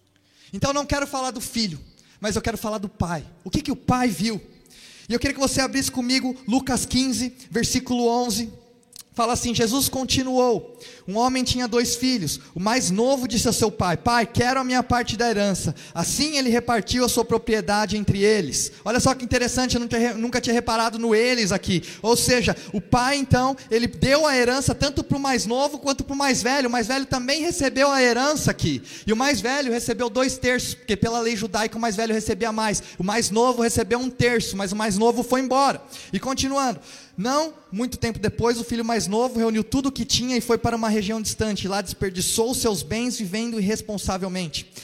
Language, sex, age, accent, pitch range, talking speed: Portuguese, male, 20-39, Brazilian, 215-255 Hz, 205 wpm